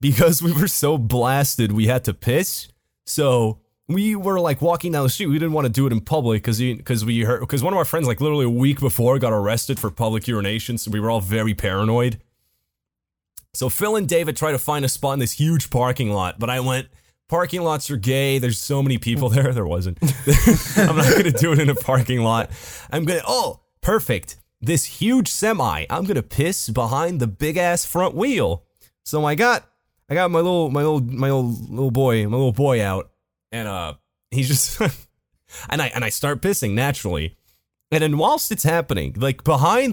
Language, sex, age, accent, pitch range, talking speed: English, male, 30-49, American, 115-165 Hz, 205 wpm